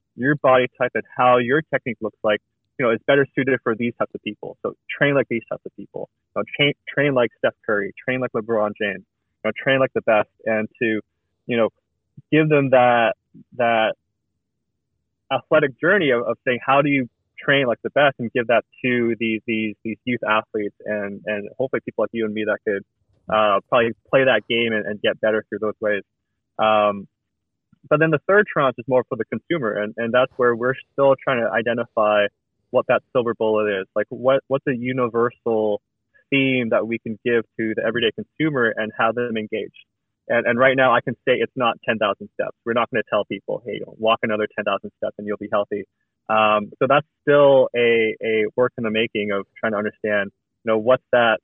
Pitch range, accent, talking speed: 105-130 Hz, American, 205 wpm